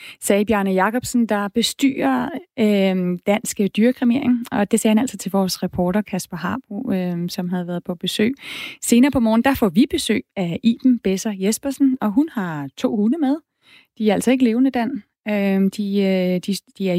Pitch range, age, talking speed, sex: 195-250 Hz, 30-49, 185 wpm, female